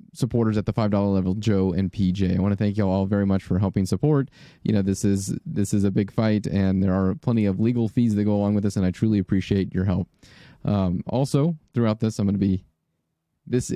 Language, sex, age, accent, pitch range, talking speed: English, male, 30-49, American, 95-115 Hz, 235 wpm